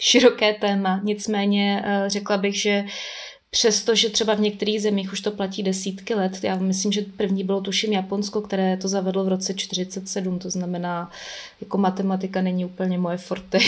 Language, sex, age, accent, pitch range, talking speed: Czech, female, 20-39, native, 185-205 Hz, 165 wpm